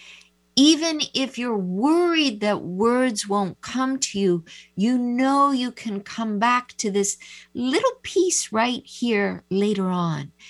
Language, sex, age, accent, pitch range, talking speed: English, female, 50-69, American, 175-245 Hz, 135 wpm